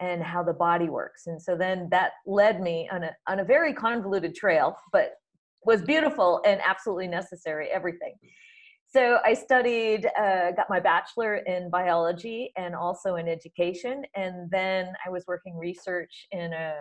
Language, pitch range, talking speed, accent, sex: English, 175-250 Hz, 165 wpm, American, female